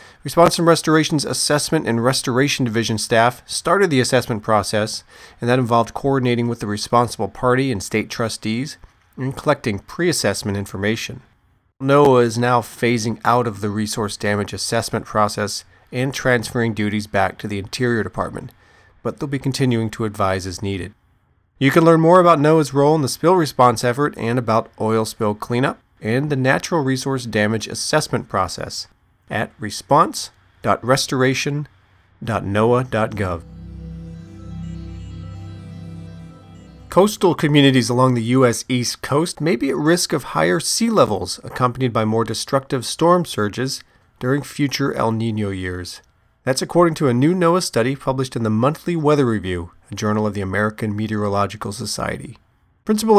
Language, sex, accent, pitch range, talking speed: English, male, American, 105-135 Hz, 140 wpm